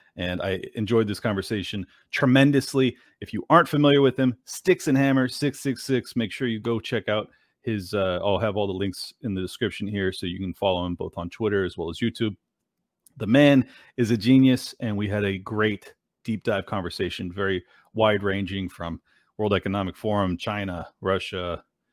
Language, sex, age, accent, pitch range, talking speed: English, male, 30-49, American, 100-130 Hz, 185 wpm